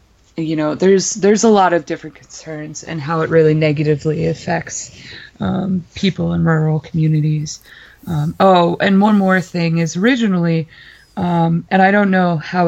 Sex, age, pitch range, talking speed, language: female, 20-39, 160-180 Hz, 160 wpm, English